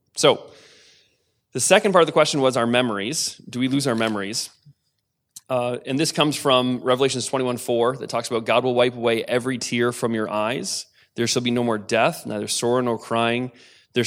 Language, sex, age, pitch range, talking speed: English, male, 20-39, 115-145 Hz, 195 wpm